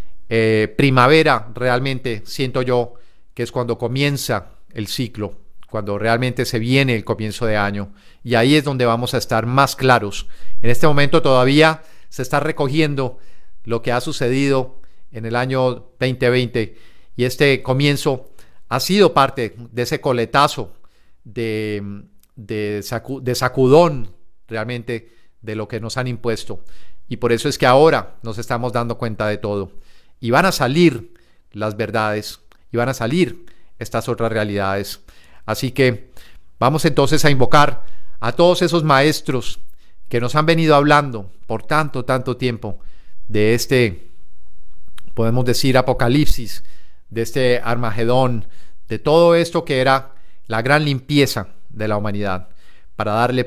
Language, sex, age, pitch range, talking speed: Spanish, male, 40-59, 105-130 Hz, 145 wpm